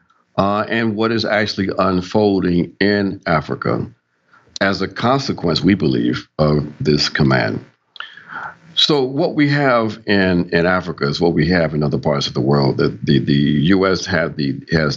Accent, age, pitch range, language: American, 50-69, 80-95 Hz, English